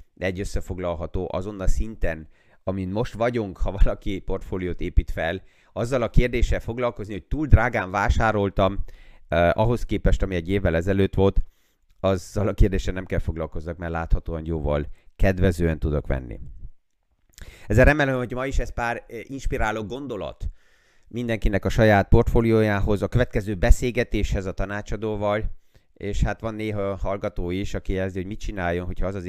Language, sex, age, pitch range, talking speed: Hungarian, male, 30-49, 85-105 Hz, 150 wpm